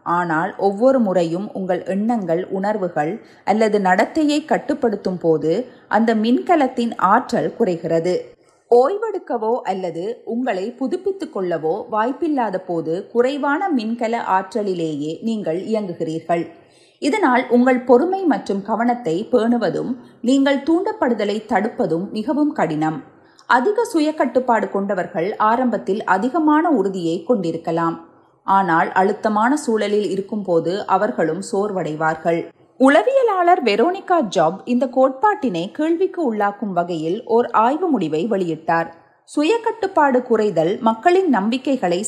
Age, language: 30-49, Tamil